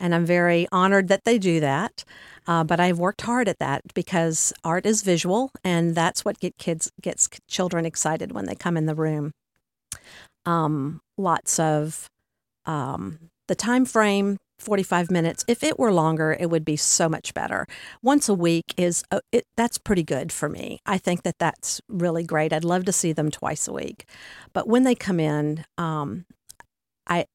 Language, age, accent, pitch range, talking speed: English, 50-69, American, 160-190 Hz, 185 wpm